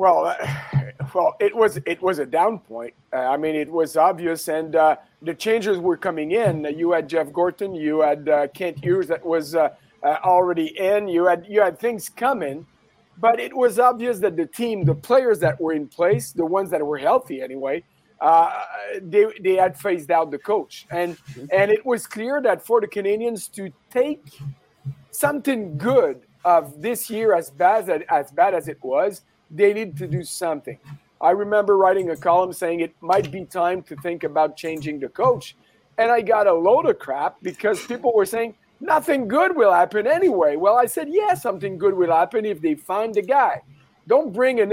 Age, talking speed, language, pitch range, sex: 40-59, 200 wpm, English, 160-235 Hz, male